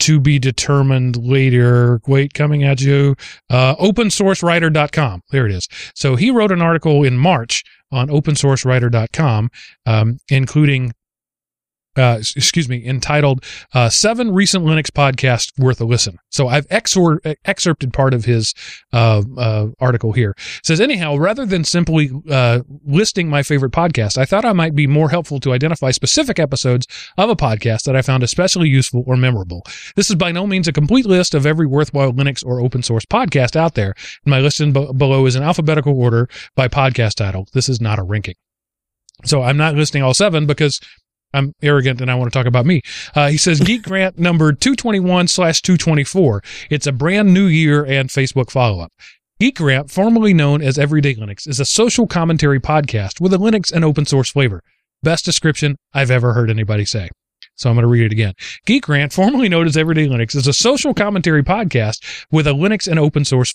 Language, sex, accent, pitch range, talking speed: English, male, American, 125-165 Hz, 185 wpm